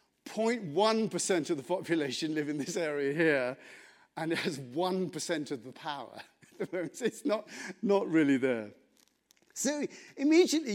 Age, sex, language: 50-69, male, English